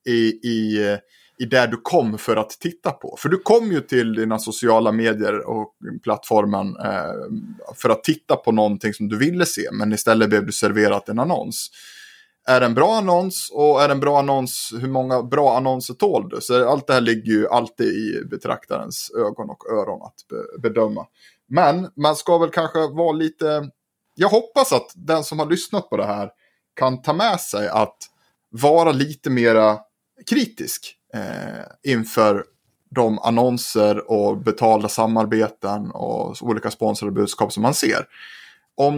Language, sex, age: Swedish, male, 30-49